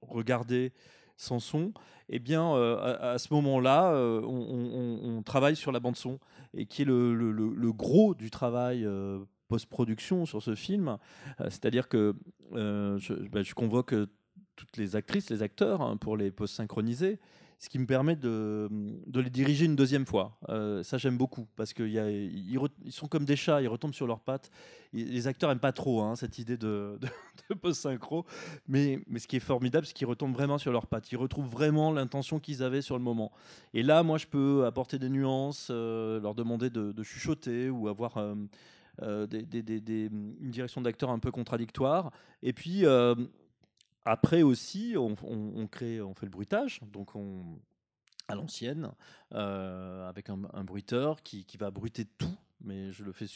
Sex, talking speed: male, 185 wpm